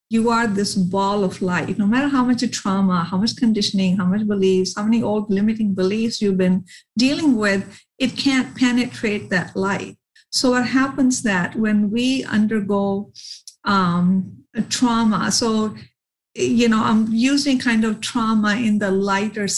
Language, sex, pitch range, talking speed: English, female, 195-230 Hz, 155 wpm